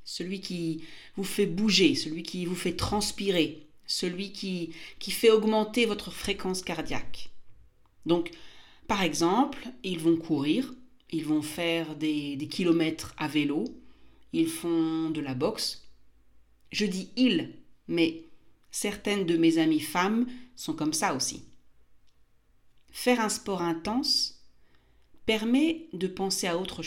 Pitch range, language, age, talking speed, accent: 165-235 Hz, French, 40-59, 135 wpm, French